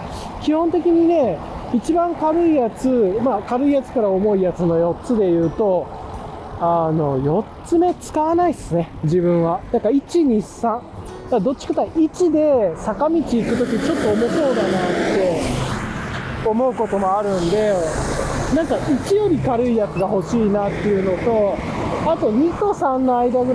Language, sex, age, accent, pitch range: Japanese, male, 20-39, native, 170-275 Hz